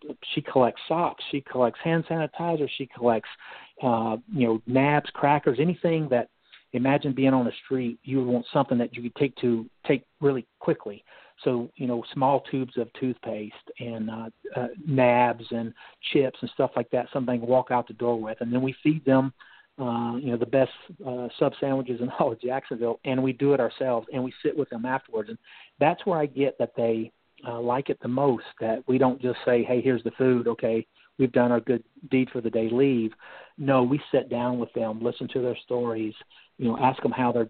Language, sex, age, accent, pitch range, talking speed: English, male, 50-69, American, 120-135 Hz, 210 wpm